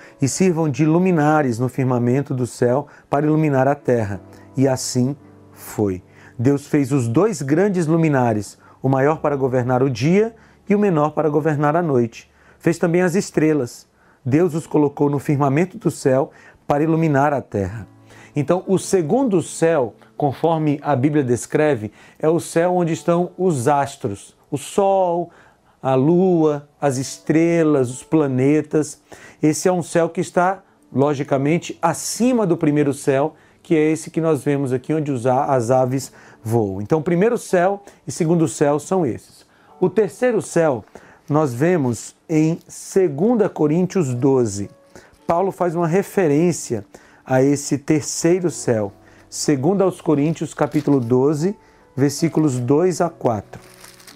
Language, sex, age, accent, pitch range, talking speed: Portuguese, male, 40-59, Brazilian, 130-170 Hz, 140 wpm